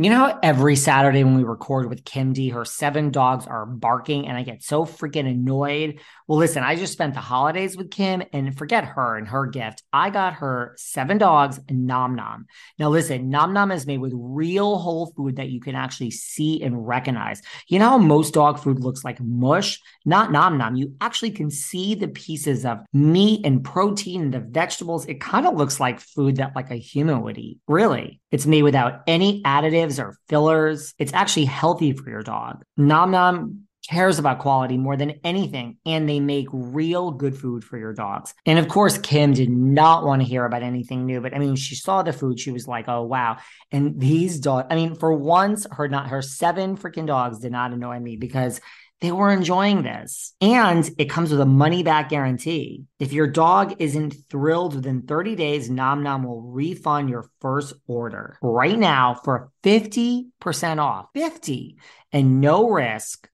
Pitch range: 130-165 Hz